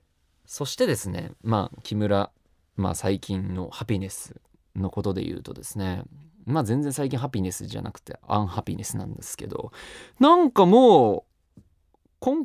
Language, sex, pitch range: Japanese, male, 95-140 Hz